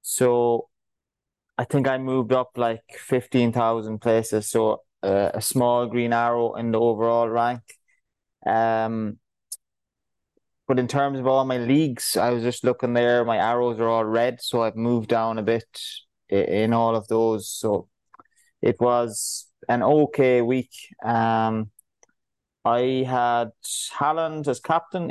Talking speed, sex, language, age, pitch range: 145 wpm, male, English, 20-39, 115-130 Hz